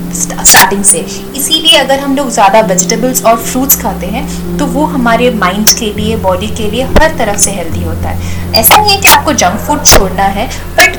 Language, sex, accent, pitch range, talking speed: Hindi, female, native, 170-265 Hz, 200 wpm